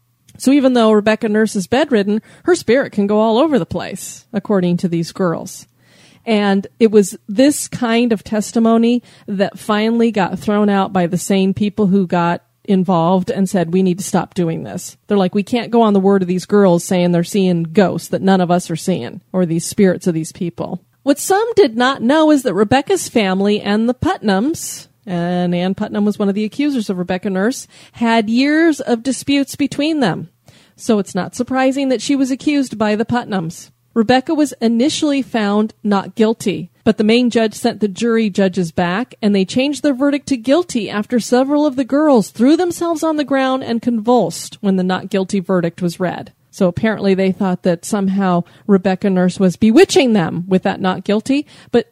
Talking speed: 195 wpm